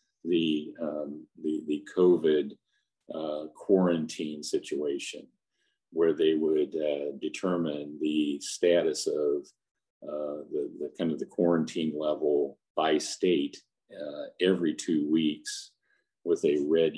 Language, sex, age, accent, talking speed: English, male, 50-69, American, 115 wpm